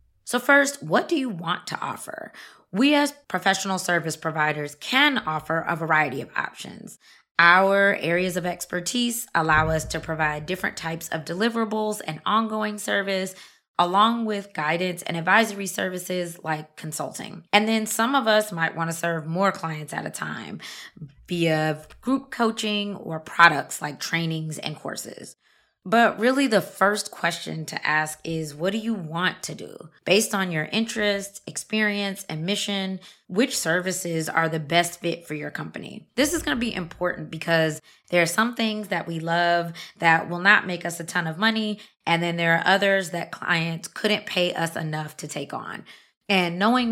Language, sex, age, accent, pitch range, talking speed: English, female, 20-39, American, 165-215 Hz, 170 wpm